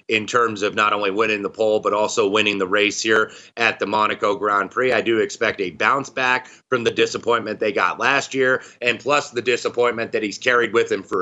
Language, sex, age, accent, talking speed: English, male, 30-49, American, 225 wpm